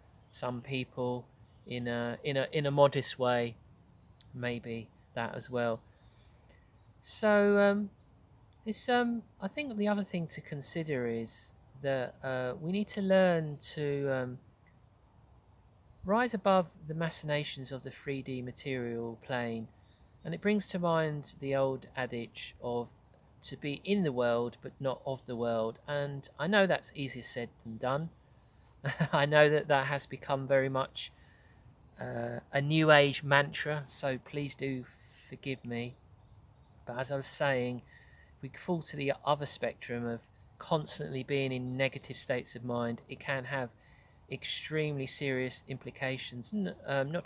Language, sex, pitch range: English, male, 120-145 Hz